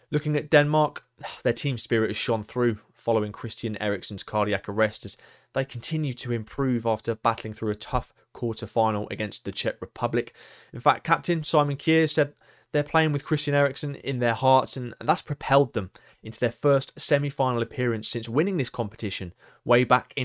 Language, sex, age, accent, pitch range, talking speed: English, male, 20-39, British, 115-150 Hz, 175 wpm